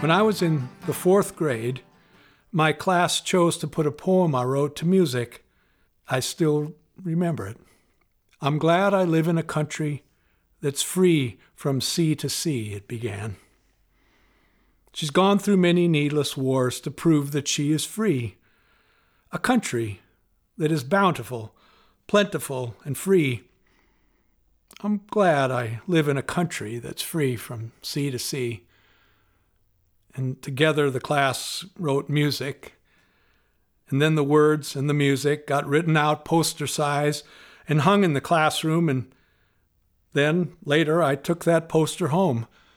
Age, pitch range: 50-69, 120-160 Hz